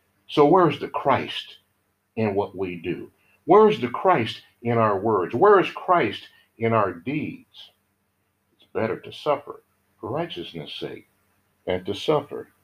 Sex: male